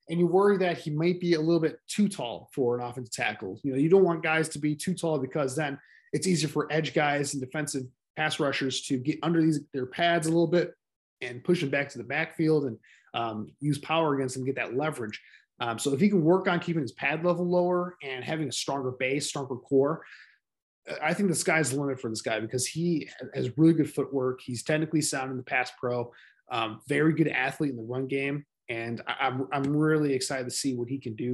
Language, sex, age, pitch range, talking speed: English, male, 20-39, 130-160 Hz, 235 wpm